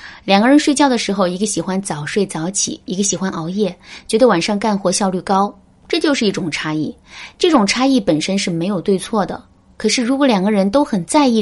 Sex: female